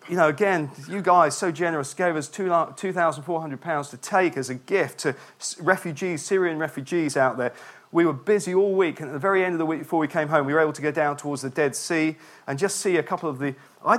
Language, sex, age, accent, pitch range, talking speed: English, male, 40-59, British, 140-180 Hz, 240 wpm